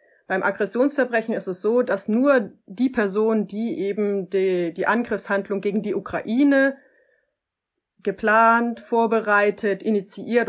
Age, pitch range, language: 30-49, 195-240 Hz, German